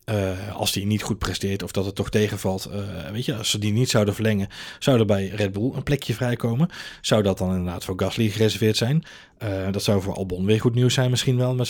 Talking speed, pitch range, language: 245 wpm, 105-130 Hz, Dutch